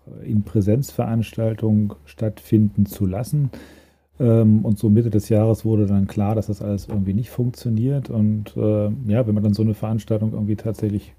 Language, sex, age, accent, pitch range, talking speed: German, male, 40-59, German, 105-120 Hz, 160 wpm